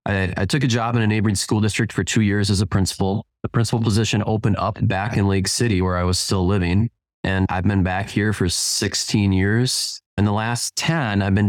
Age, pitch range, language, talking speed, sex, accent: 20-39, 95-115 Hz, English, 230 wpm, male, American